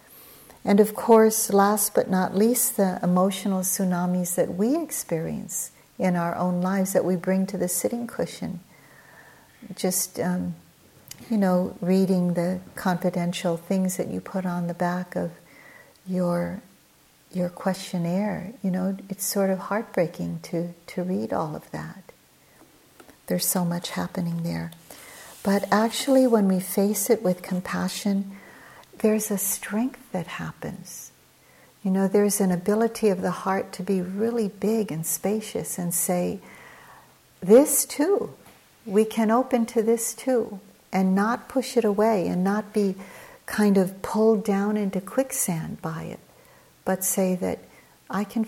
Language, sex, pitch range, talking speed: English, female, 180-220 Hz, 145 wpm